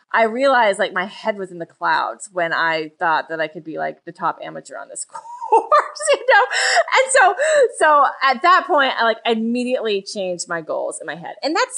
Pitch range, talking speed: 170-270 Hz, 215 wpm